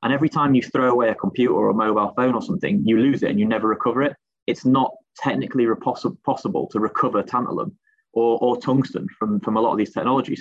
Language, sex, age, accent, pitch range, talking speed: English, male, 30-49, British, 110-140 Hz, 225 wpm